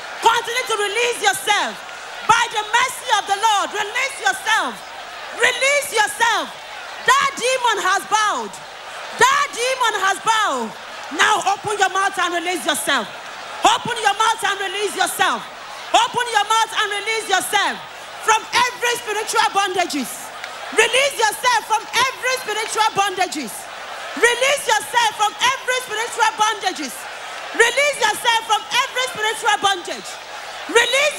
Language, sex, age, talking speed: English, female, 40-59, 120 wpm